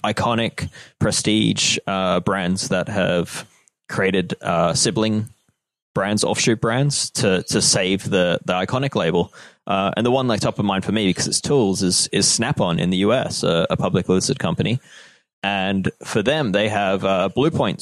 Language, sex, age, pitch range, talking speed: English, male, 20-39, 90-115 Hz, 175 wpm